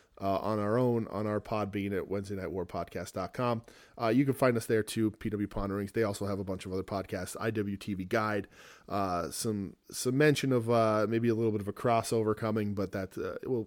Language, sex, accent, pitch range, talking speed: English, male, American, 100-120 Hz, 215 wpm